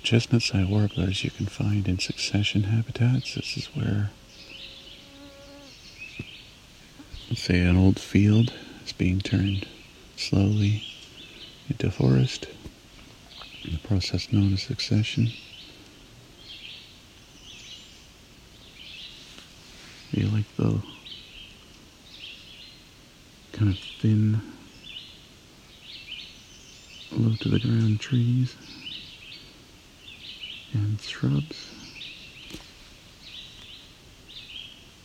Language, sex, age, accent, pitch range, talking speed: English, male, 50-69, American, 95-120 Hz, 65 wpm